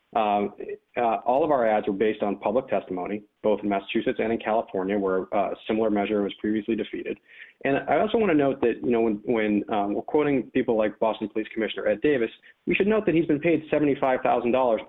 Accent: American